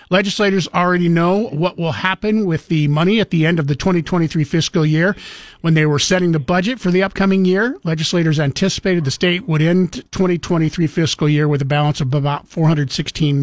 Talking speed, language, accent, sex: 190 wpm, English, American, male